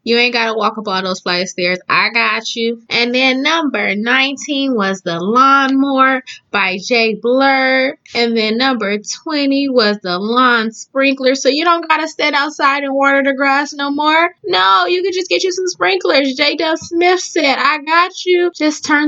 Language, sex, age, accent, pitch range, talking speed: English, female, 20-39, American, 235-320 Hz, 190 wpm